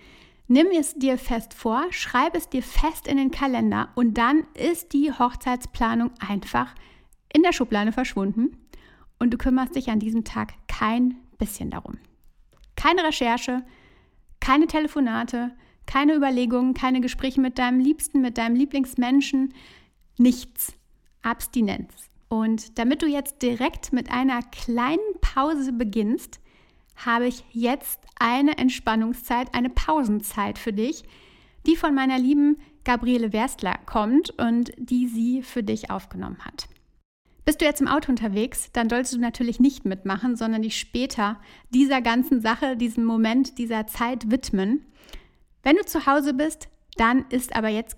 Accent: German